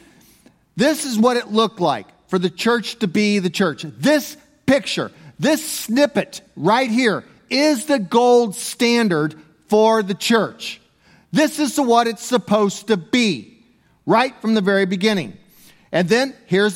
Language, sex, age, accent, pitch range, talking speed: English, male, 40-59, American, 170-230 Hz, 145 wpm